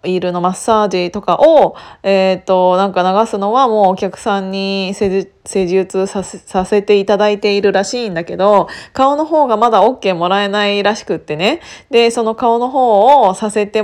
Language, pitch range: Japanese, 185-260 Hz